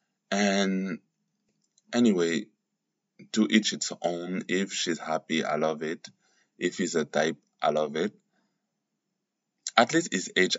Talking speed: 130 wpm